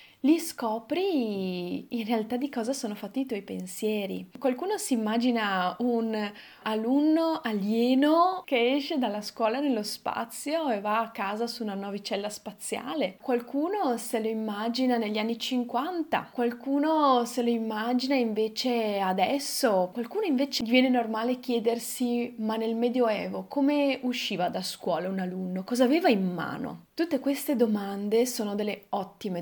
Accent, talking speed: native, 140 wpm